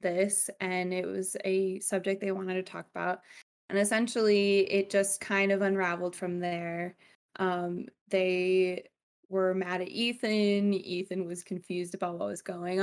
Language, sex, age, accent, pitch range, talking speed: English, female, 20-39, American, 185-205 Hz, 155 wpm